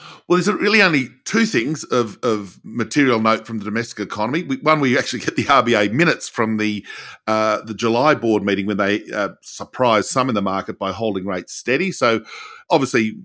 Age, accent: 50-69, Australian